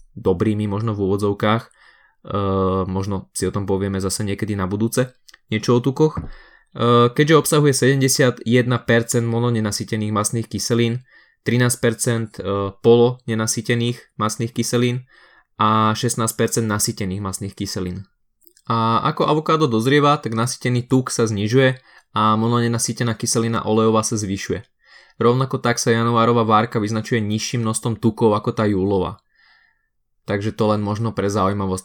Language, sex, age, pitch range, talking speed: Slovak, male, 20-39, 105-120 Hz, 125 wpm